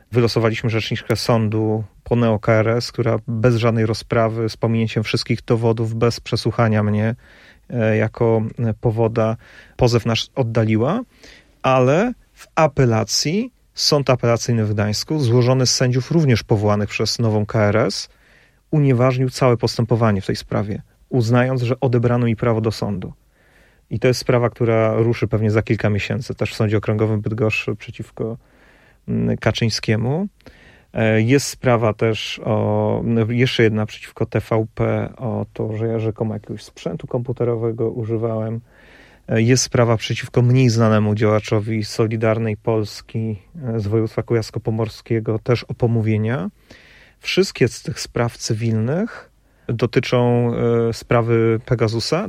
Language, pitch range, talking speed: Polish, 110-125 Hz, 120 wpm